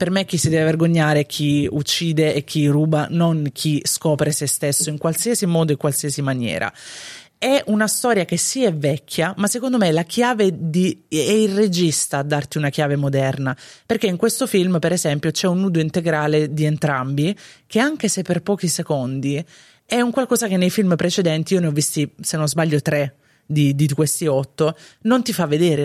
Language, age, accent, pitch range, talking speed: Italian, 20-39, native, 145-185 Hz, 200 wpm